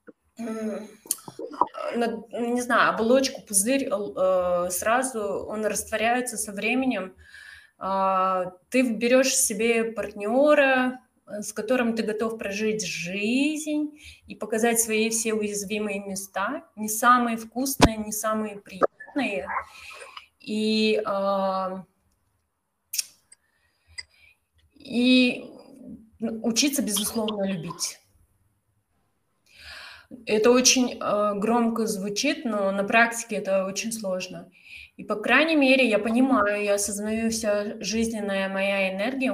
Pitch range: 200-245 Hz